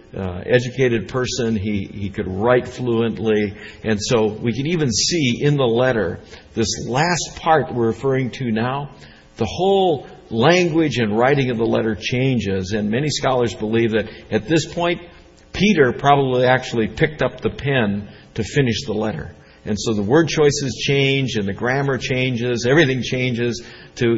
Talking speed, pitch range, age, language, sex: 160 wpm, 105-140 Hz, 60-79, English, male